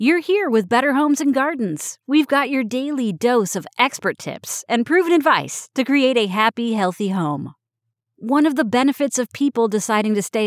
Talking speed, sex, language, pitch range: 190 wpm, female, English, 180-255 Hz